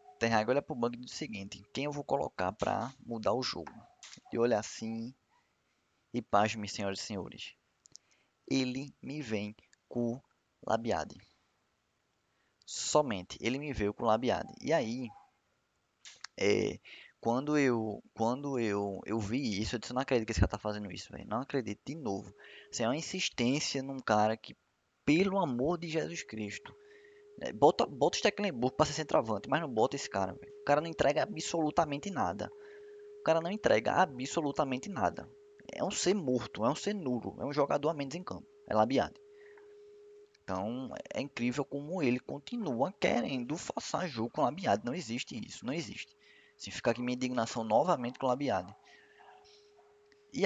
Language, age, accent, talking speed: Portuguese, 20-39, Brazilian, 165 wpm